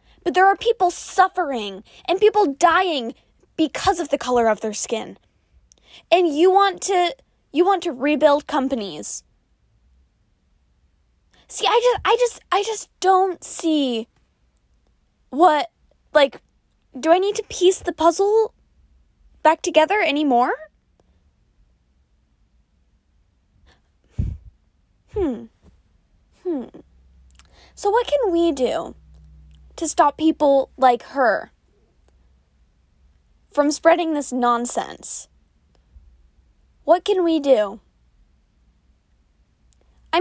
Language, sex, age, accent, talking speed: English, female, 10-29, American, 100 wpm